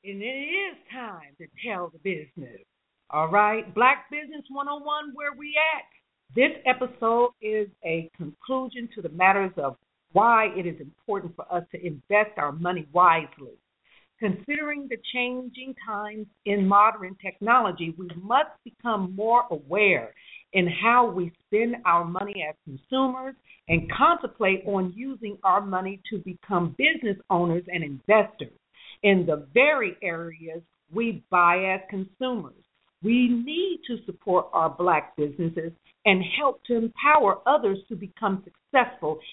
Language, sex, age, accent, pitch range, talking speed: English, female, 50-69, American, 180-255 Hz, 140 wpm